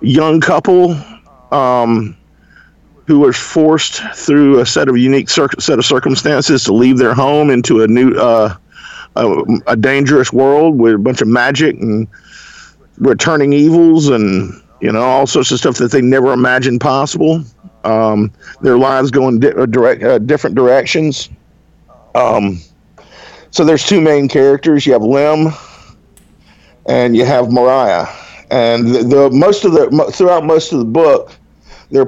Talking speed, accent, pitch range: 155 wpm, American, 120-160 Hz